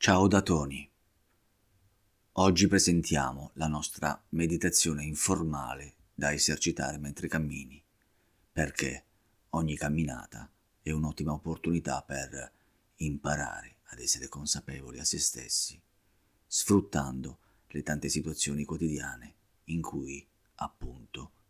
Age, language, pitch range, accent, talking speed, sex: 40-59, Italian, 75-95 Hz, native, 100 wpm, male